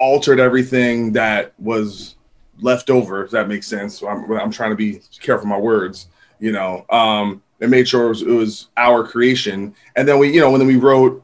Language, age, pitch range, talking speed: English, 30-49, 110-130 Hz, 215 wpm